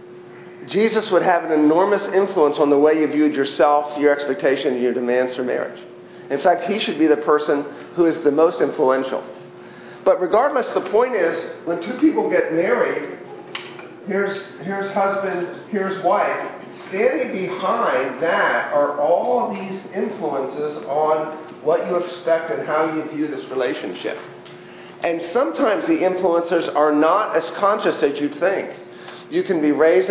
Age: 40-59